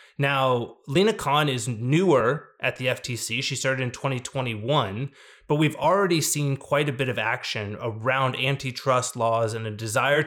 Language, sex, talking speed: English, male, 160 wpm